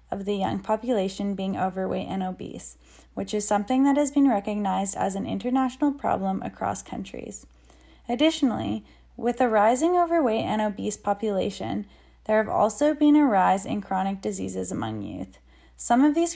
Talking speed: 160 wpm